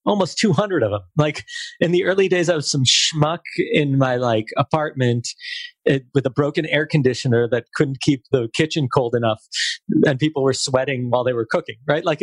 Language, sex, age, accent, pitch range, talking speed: English, male, 40-59, American, 115-155 Hz, 190 wpm